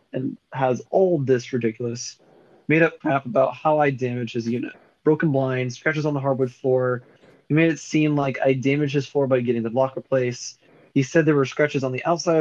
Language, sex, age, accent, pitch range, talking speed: English, male, 20-39, American, 125-155 Hz, 210 wpm